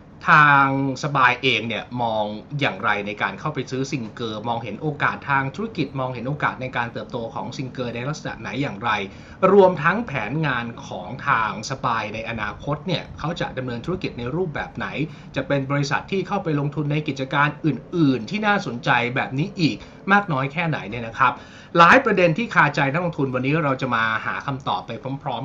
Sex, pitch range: male, 120-155 Hz